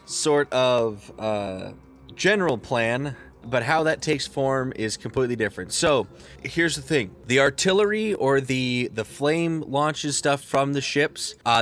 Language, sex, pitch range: English, male, 110-140 Hz